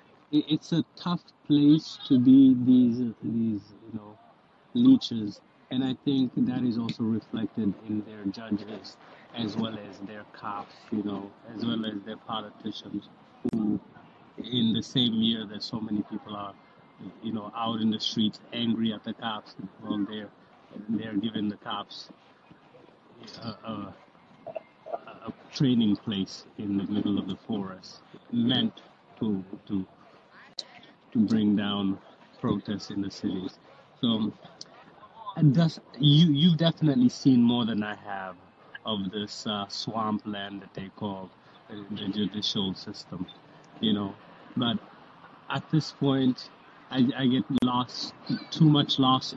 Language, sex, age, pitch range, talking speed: English, male, 50-69, 105-130 Hz, 135 wpm